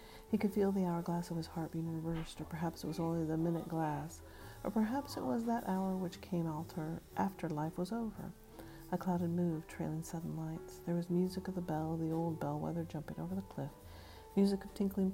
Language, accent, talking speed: English, American, 215 wpm